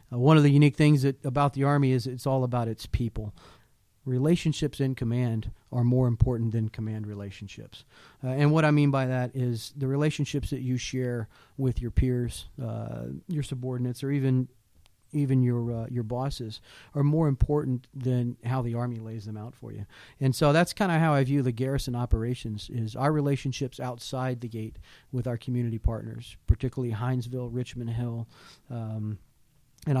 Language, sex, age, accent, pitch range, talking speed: English, male, 40-59, American, 115-135 Hz, 180 wpm